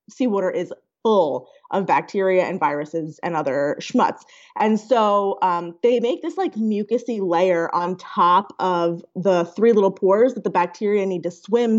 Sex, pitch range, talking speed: female, 180-250 Hz, 165 wpm